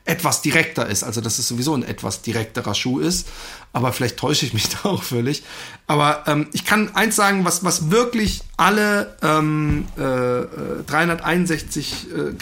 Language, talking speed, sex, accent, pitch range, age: German, 160 wpm, male, German, 130-175 Hz, 40-59